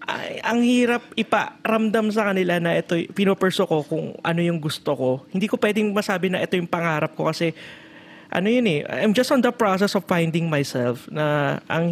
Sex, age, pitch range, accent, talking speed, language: male, 20-39, 135-170 Hz, native, 195 wpm, Filipino